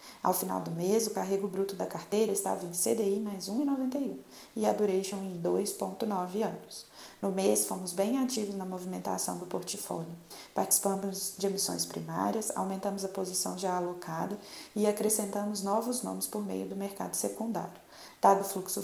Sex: female